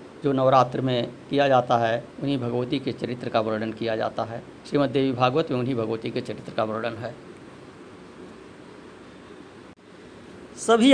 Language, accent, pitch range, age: Hindi, native, 125-170 Hz, 60-79